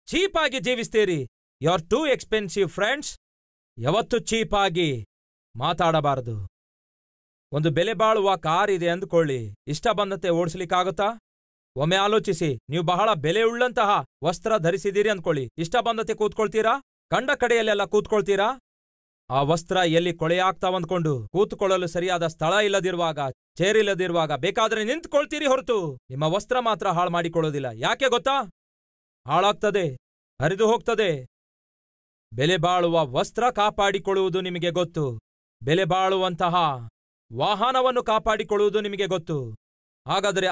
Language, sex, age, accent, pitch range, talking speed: Kannada, male, 40-59, native, 155-215 Hz, 100 wpm